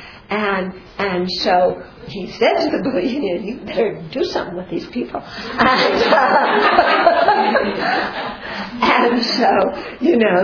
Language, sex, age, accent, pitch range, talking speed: English, female, 50-69, American, 180-240 Hz, 120 wpm